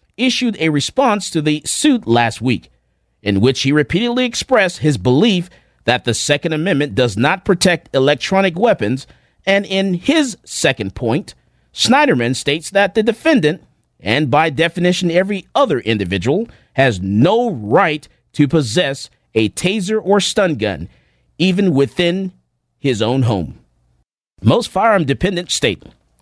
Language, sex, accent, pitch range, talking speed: English, male, American, 115-195 Hz, 135 wpm